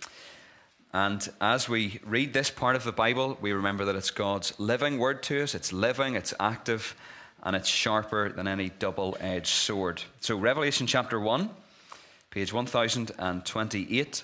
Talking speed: 145 wpm